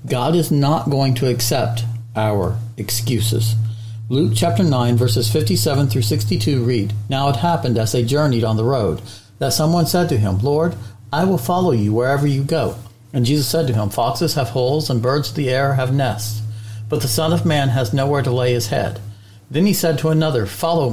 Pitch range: 115-155 Hz